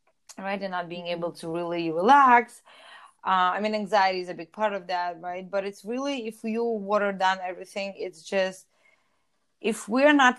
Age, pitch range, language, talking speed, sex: 20-39, 175-215 Hz, English, 185 wpm, female